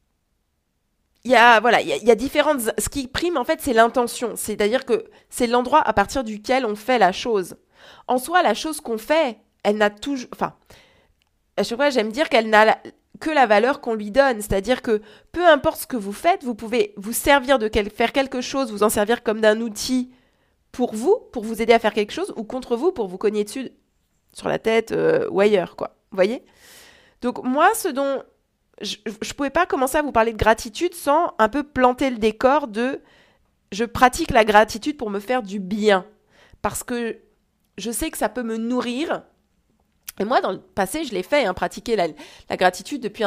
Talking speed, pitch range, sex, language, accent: 210 wpm, 210-260 Hz, female, French, French